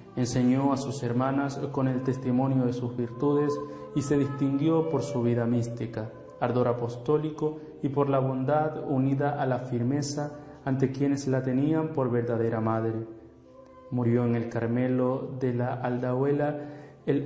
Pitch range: 120-135 Hz